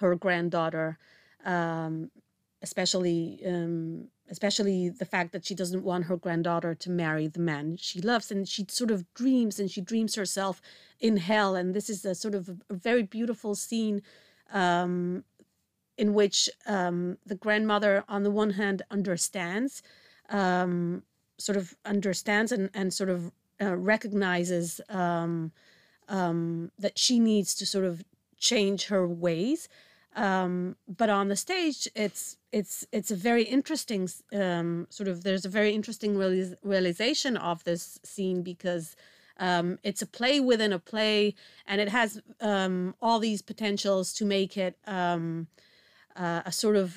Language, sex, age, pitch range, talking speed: English, female, 30-49, 180-210 Hz, 150 wpm